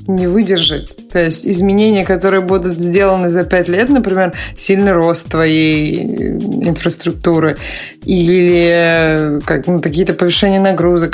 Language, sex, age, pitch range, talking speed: Russian, female, 20-39, 180-215 Hz, 120 wpm